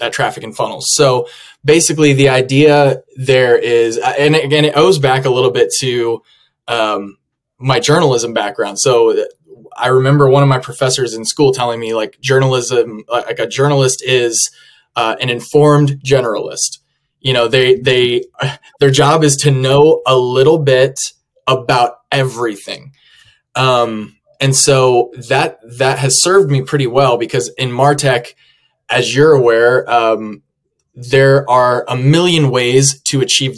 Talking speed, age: 145 wpm, 20-39